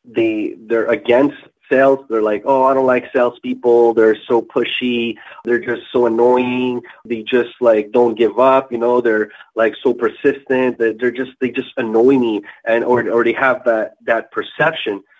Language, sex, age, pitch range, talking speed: English, male, 20-39, 120-145 Hz, 180 wpm